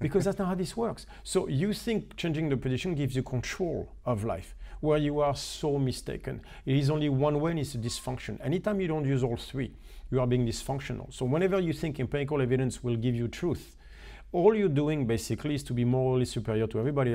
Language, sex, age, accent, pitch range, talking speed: English, male, 40-59, French, 120-145 Hz, 215 wpm